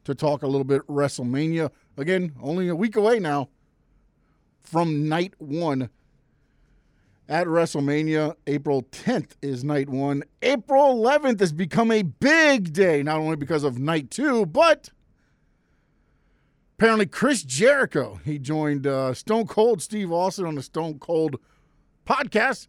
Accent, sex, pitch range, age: American, male, 145-215 Hz, 50-69